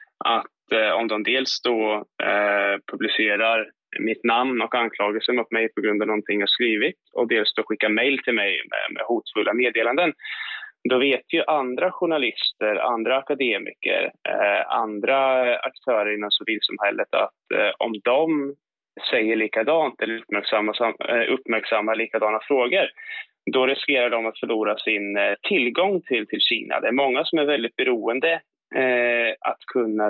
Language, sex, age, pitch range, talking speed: Swedish, male, 20-39, 110-135 Hz, 150 wpm